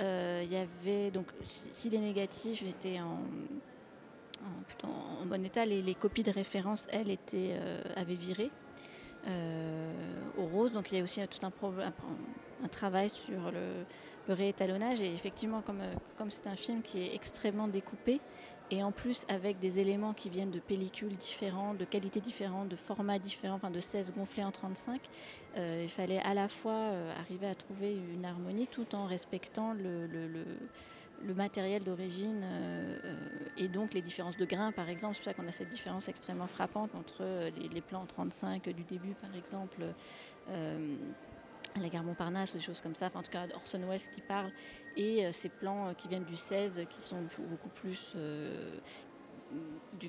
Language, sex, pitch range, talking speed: French, female, 180-205 Hz, 180 wpm